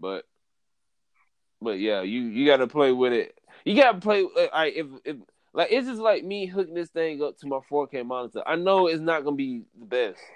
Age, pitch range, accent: 20-39, 120-175 Hz, American